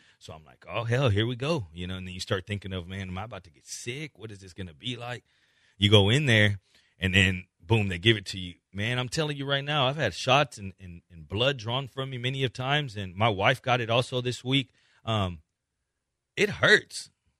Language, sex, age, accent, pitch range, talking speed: English, male, 30-49, American, 105-145 Hz, 245 wpm